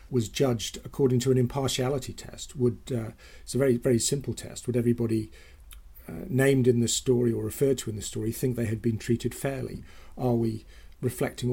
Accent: British